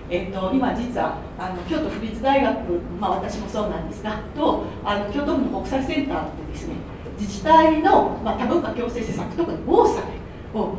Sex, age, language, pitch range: female, 40-59, Japanese, 210-270 Hz